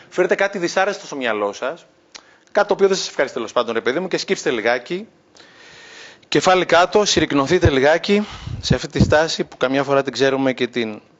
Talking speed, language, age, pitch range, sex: 190 wpm, Greek, 30-49, 155-200 Hz, male